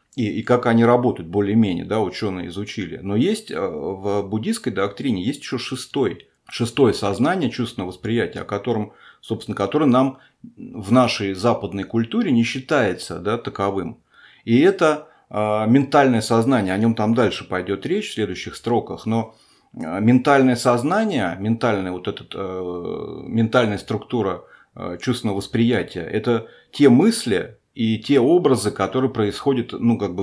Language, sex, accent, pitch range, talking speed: Russian, male, native, 100-130 Hz, 135 wpm